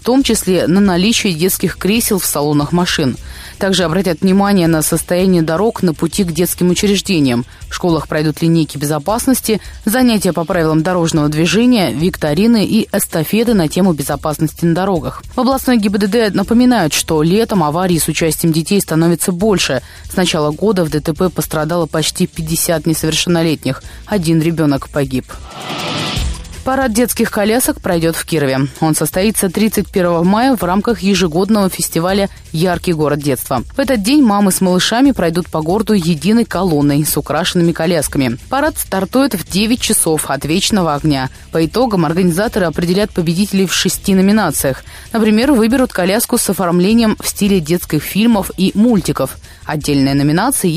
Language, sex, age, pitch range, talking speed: Russian, female, 20-39, 160-215 Hz, 145 wpm